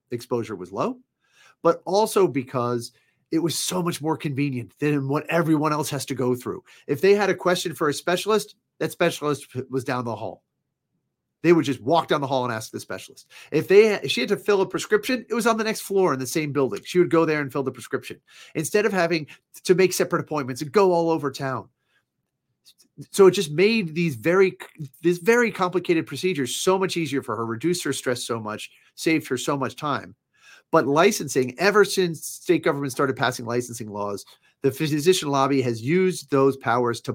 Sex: male